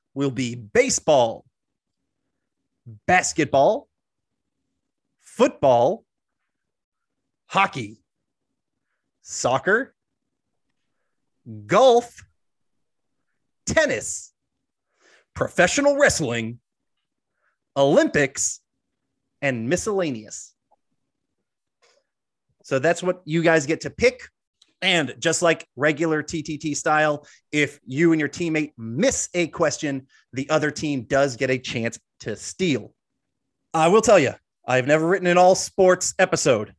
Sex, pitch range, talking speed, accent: male, 130-185 Hz, 90 wpm, American